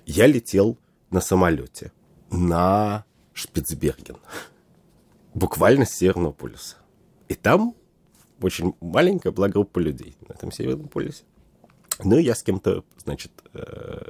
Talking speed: 110 wpm